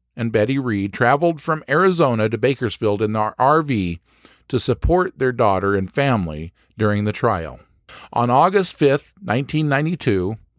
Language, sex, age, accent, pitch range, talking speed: English, male, 50-69, American, 100-140 Hz, 135 wpm